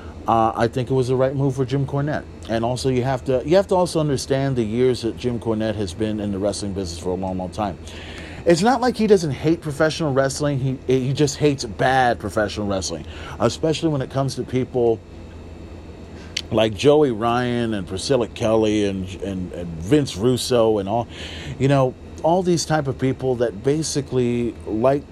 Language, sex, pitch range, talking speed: English, male, 105-145 Hz, 195 wpm